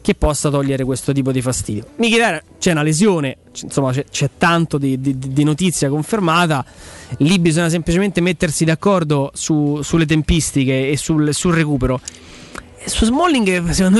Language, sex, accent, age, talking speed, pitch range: Italian, male, native, 20-39, 150 wpm, 145-190 Hz